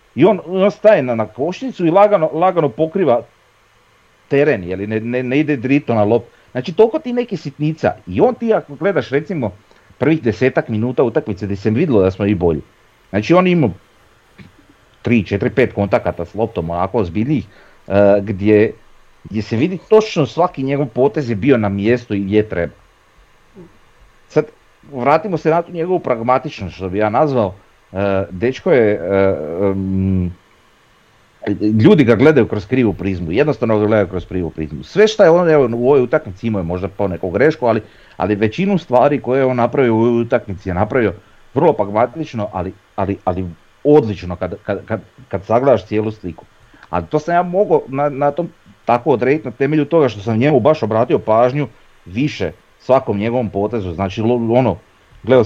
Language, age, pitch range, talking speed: Croatian, 40-59, 100-145 Hz, 170 wpm